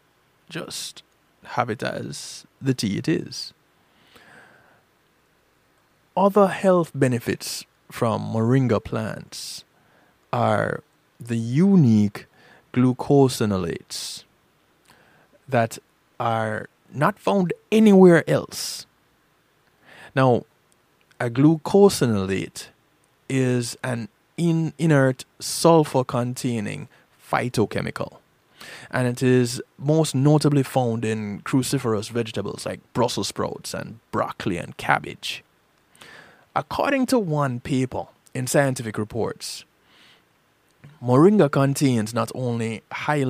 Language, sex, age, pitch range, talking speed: English, male, 20-39, 115-150 Hz, 85 wpm